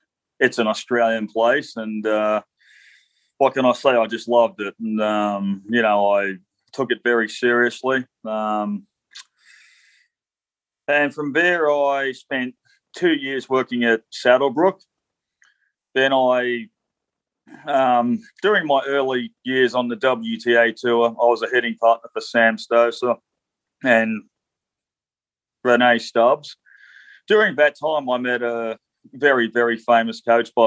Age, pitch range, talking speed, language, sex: 30-49, 110-125 Hz, 130 wpm, English, male